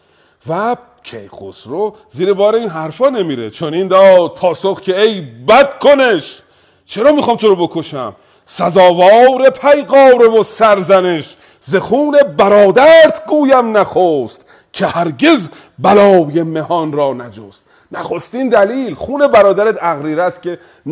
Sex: male